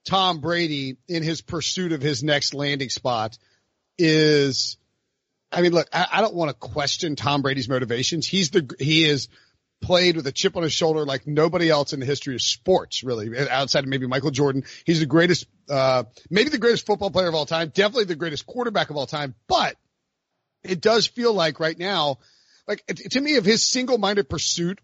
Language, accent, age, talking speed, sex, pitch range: English, American, 40-59, 200 wpm, male, 145-185 Hz